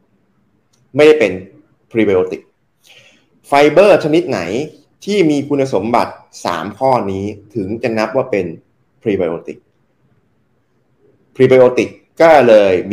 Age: 20-39